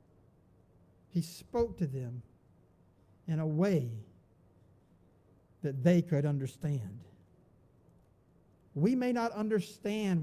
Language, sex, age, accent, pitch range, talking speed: English, male, 60-79, American, 110-185 Hz, 90 wpm